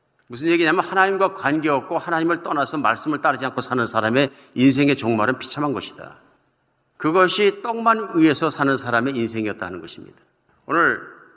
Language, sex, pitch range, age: Korean, male, 125-170 Hz, 50-69